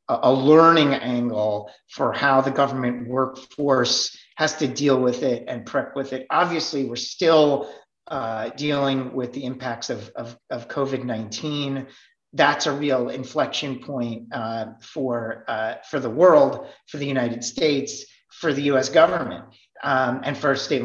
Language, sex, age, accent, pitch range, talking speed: English, male, 40-59, American, 130-160 Hz, 150 wpm